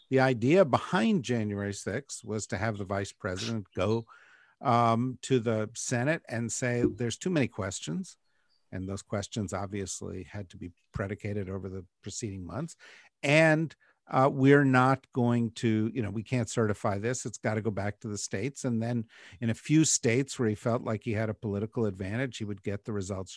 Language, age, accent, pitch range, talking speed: English, 50-69, American, 105-130 Hz, 190 wpm